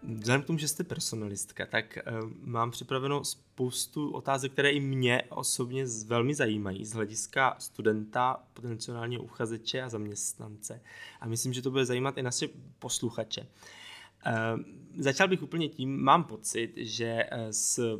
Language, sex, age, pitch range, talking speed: Czech, male, 20-39, 115-135 Hz, 140 wpm